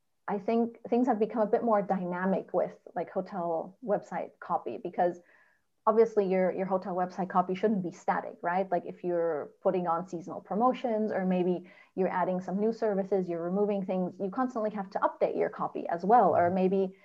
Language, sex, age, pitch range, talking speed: English, female, 30-49, 175-205 Hz, 185 wpm